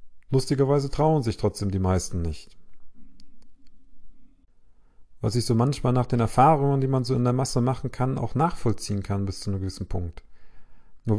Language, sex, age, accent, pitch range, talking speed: German, male, 40-59, German, 95-125 Hz, 165 wpm